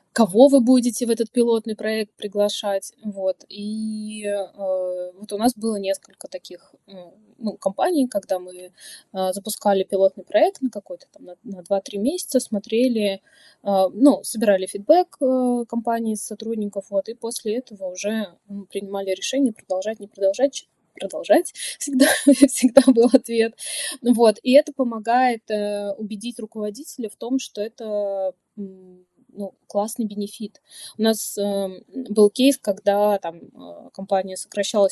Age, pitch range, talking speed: 20-39, 195-245 Hz, 135 wpm